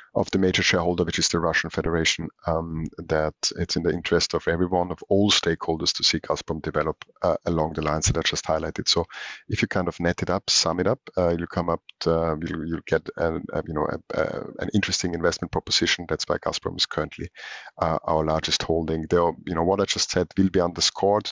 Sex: male